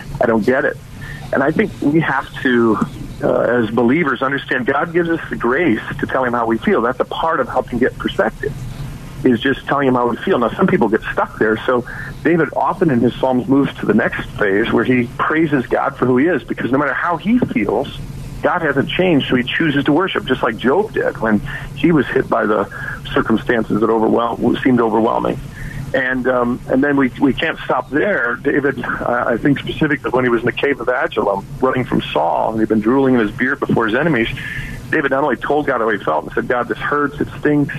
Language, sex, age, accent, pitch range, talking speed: English, male, 50-69, American, 120-145 Hz, 225 wpm